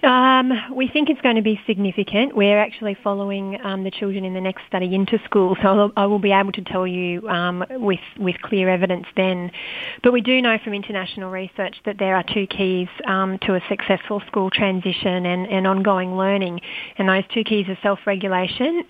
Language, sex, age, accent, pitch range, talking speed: English, female, 30-49, Australian, 190-210 Hz, 200 wpm